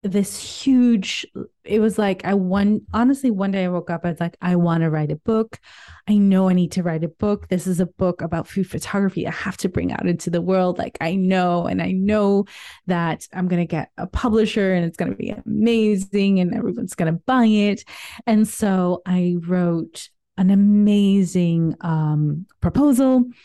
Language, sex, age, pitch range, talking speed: English, female, 30-49, 165-200 Hz, 200 wpm